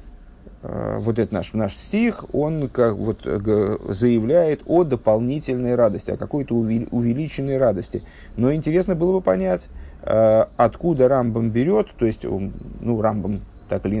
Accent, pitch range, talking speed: native, 100-125 Hz, 135 wpm